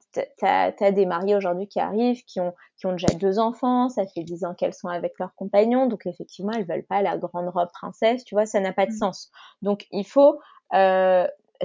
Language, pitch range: French, 190-235 Hz